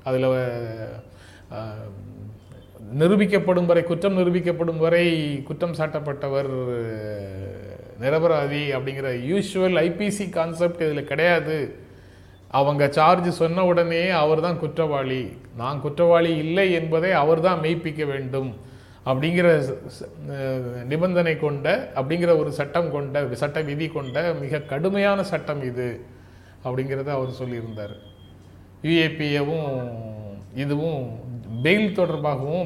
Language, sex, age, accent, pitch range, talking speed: Tamil, male, 30-49, native, 120-165 Hz, 95 wpm